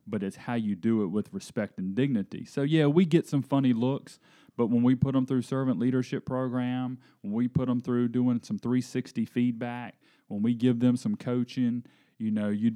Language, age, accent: English, 30-49, American